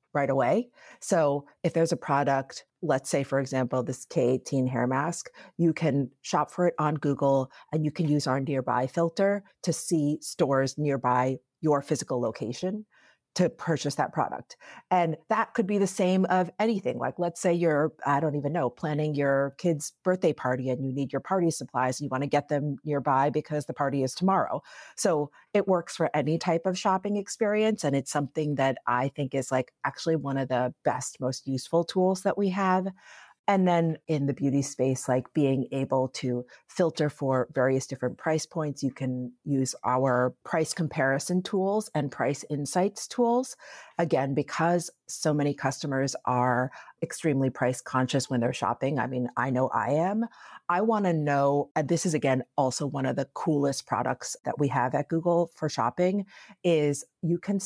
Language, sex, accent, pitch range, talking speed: English, female, American, 135-175 Hz, 185 wpm